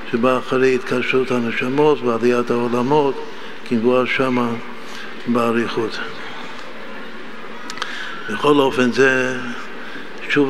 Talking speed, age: 75 wpm, 60-79